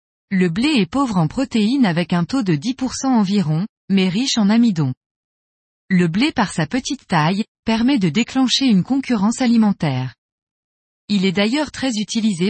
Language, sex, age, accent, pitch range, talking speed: French, female, 20-39, French, 175-250 Hz, 160 wpm